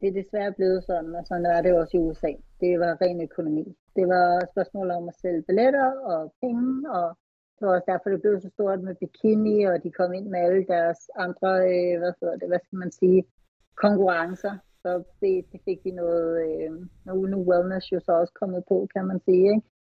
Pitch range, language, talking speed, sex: 175-205 Hz, Danish, 210 wpm, female